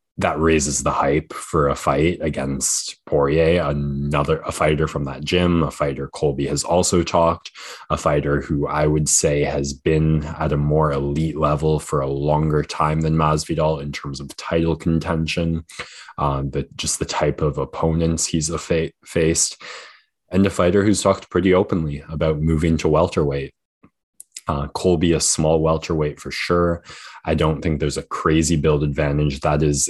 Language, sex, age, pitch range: English, male, 20-39, 75-80 Hz